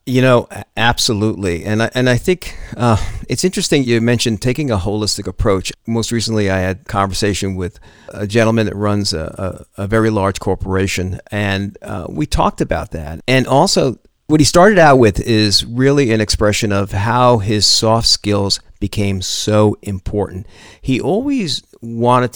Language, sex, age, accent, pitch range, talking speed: English, male, 50-69, American, 100-120 Hz, 165 wpm